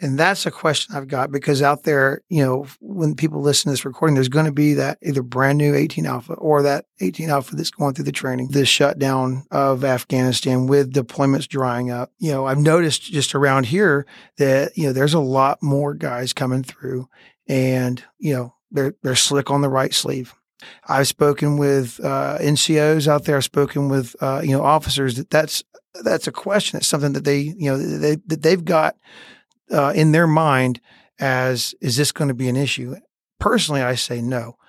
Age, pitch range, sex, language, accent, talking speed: 40-59, 130-150 Hz, male, English, American, 200 wpm